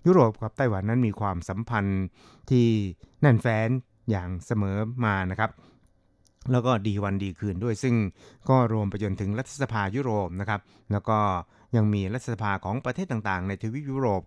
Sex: male